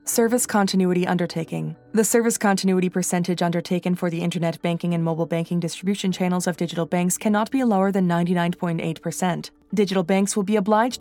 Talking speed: 165 wpm